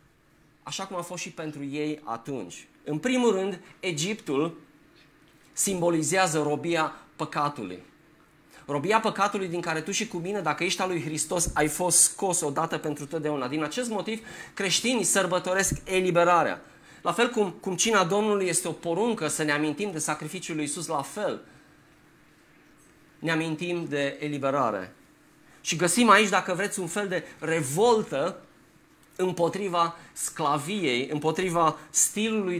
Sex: male